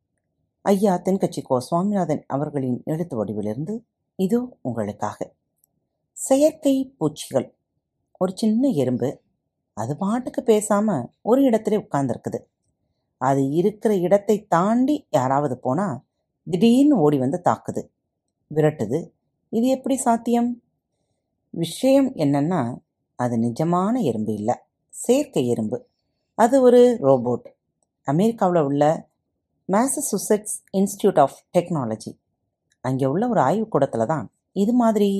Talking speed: 100 wpm